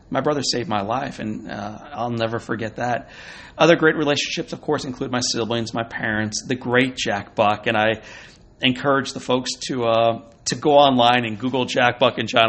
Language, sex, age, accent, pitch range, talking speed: English, male, 40-59, American, 110-140 Hz, 195 wpm